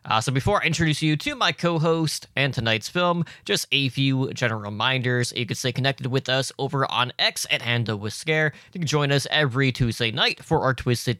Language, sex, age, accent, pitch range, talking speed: English, male, 20-39, American, 115-150 Hz, 215 wpm